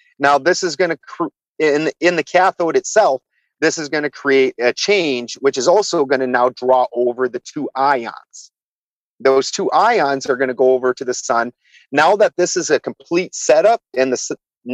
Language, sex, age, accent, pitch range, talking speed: English, male, 30-49, American, 130-175 Hz, 200 wpm